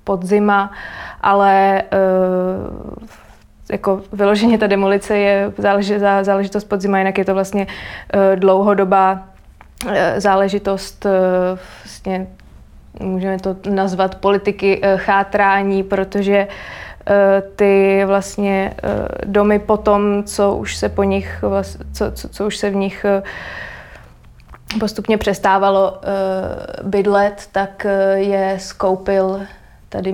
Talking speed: 90 wpm